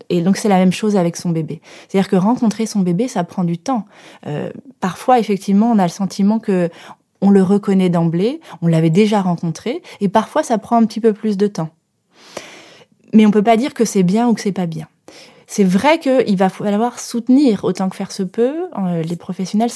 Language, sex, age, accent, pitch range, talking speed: French, female, 30-49, French, 175-230 Hz, 215 wpm